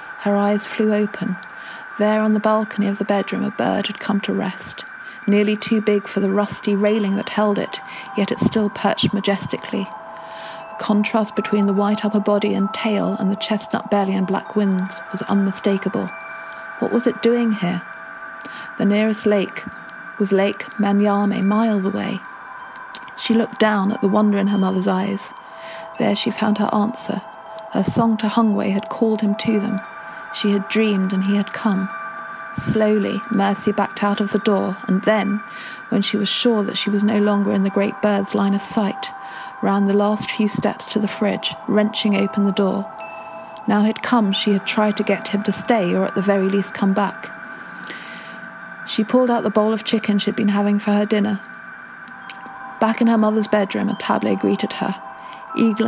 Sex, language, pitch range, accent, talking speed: female, English, 200-220 Hz, British, 185 wpm